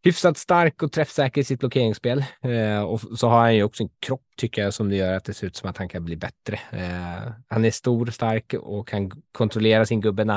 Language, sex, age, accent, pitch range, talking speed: Swedish, male, 20-39, Norwegian, 95-120 Hz, 235 wpm